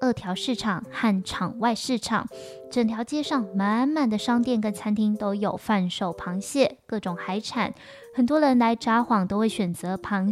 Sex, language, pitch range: female, Chinese, 195-250 Hz